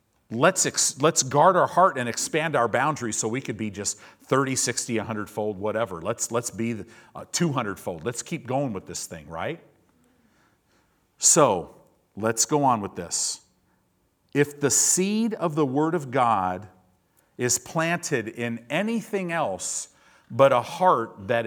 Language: English